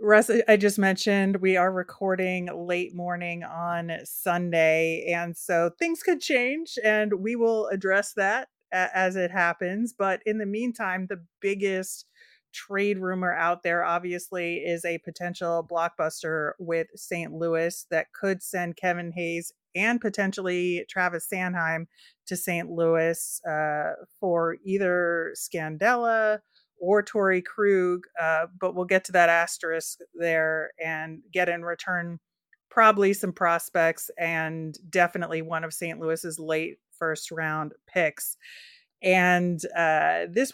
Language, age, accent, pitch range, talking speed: English, 30-49, American, 165-195 Hz, 130 wpm